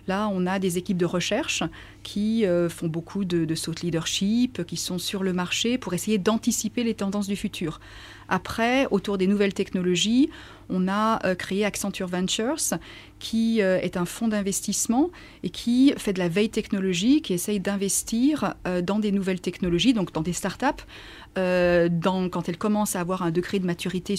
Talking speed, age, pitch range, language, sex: 180 wpm, 30-49, 180-220 Hz, French, female